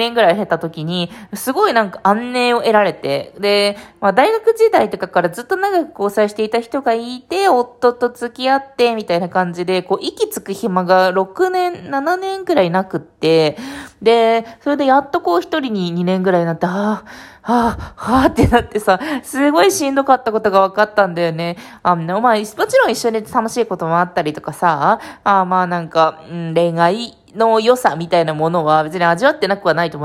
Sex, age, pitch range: female, 20-39, 175-260 Hz